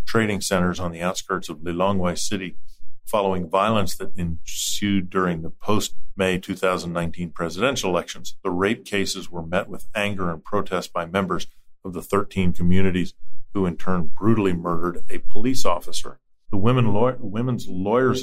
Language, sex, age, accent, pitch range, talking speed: English, male, 40-59, American, 85-100 Hz, 145 wpm